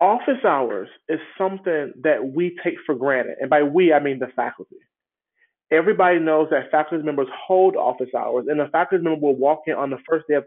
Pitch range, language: 145-175 Hz, English